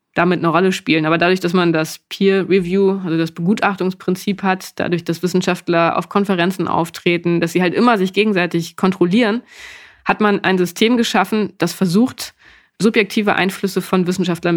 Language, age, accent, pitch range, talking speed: German, 20-39, German, 175-200 Hz, 155 wpm